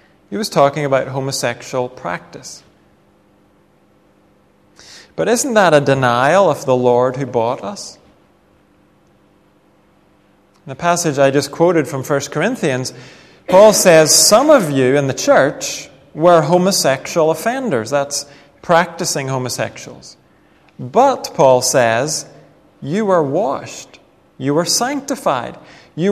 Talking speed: 115 wpm